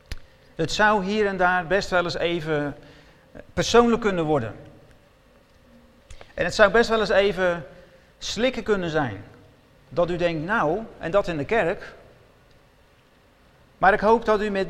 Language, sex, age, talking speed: Dutch, male, 40-59, 150 wpm